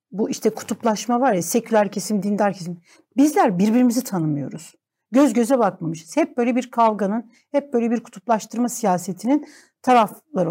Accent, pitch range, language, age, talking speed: native, 205-275 Hz, Turkish, 60-79, 145 wpm